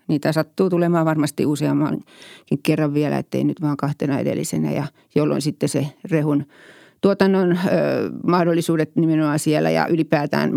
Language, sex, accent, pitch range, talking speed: Finnish, female, native, 150-175 Hz, 135 wpm